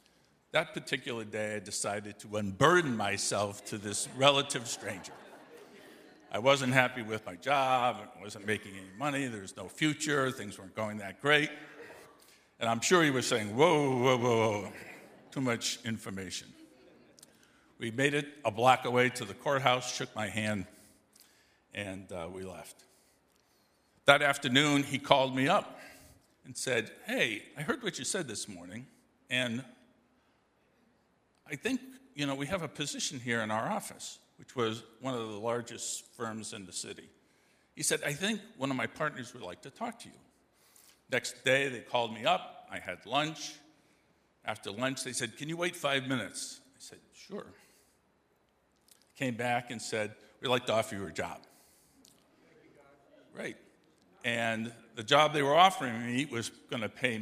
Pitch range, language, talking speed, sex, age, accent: 105-140 Hz, English, 165 wpm, male, 50-69, American